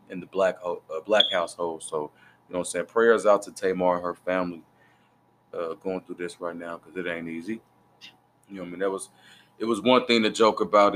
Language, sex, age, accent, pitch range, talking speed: English, male, 20-39, American, 95-110 Hz, 235 wpm